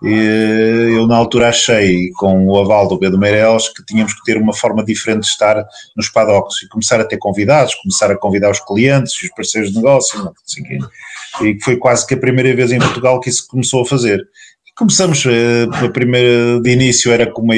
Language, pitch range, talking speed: Portuguese, 110-130 Hz, 215 wpm